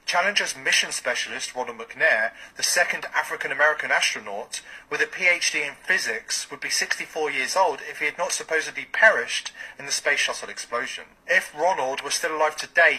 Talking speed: 165 wpm